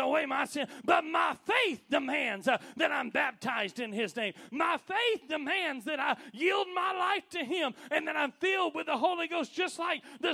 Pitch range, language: 200-305 Hz, English